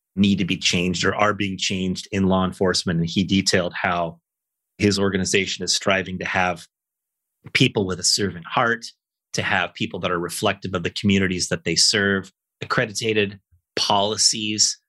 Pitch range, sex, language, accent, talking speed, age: 95-105 Hz, male, English, American, 160 wpm, 30-49